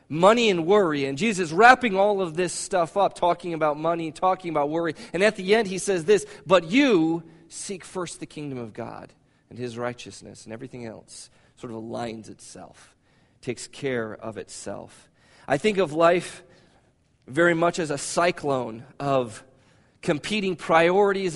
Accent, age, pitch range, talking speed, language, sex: American, 40-59, 125-175 Hz, 165 wpm, English, male